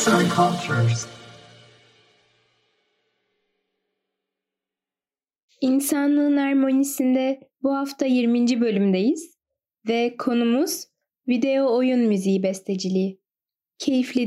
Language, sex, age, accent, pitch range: Turkish, female, 10-29, native, 215-290 Hz